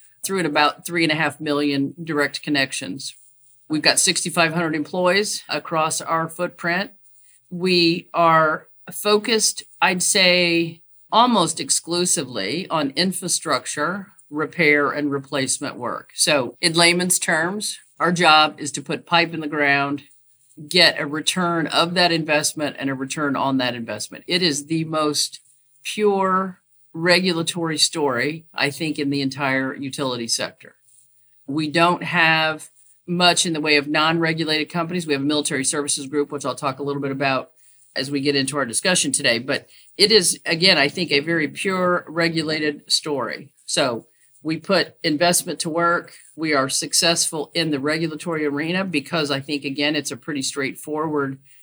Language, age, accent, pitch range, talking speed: English, 50-69, American, 145-170 Hz, 150 wpm